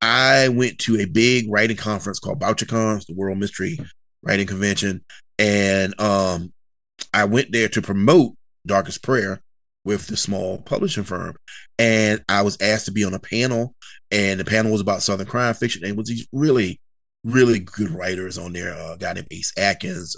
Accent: American